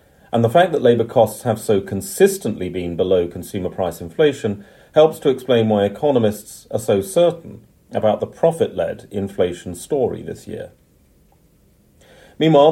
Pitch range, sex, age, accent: 100-135 Hz, male, 40-59, British